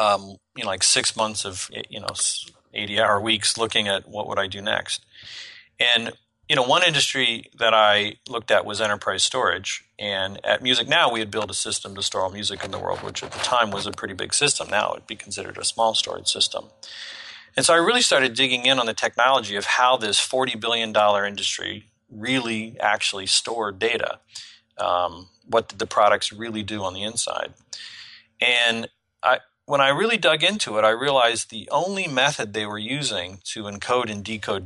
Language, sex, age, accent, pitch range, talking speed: English, male, 40-59, American, 105-125 Hz, 195 wpm